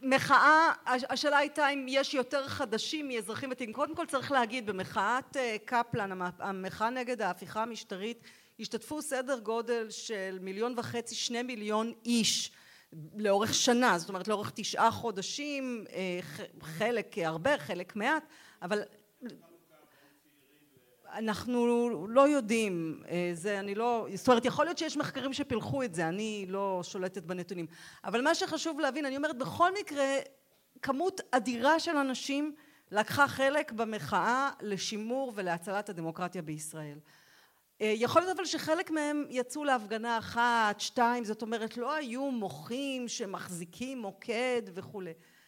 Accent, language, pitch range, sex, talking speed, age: native, Hebrew, 200-275 Hz, female, 125 wpm, 40-59